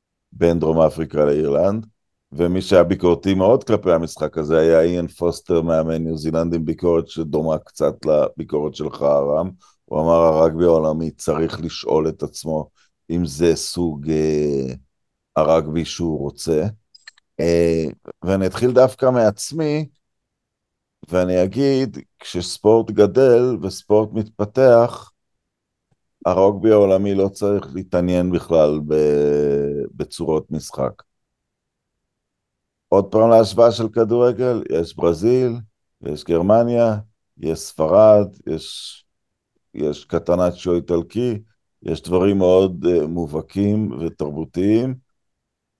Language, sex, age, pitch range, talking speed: Hebrew, male, 50-69, 80-105 Hz, 100 wpm